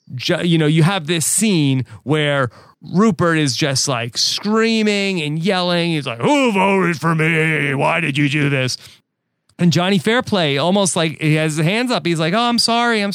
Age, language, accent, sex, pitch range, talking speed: 30-49, English, American, male, 145-185 Hz, 185 wpm